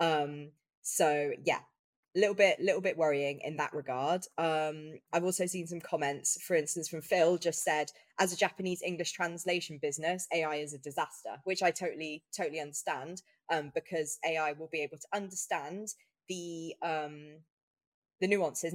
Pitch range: 155-180 Hz